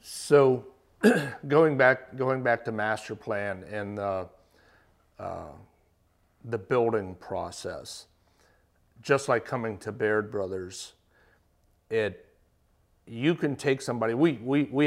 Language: English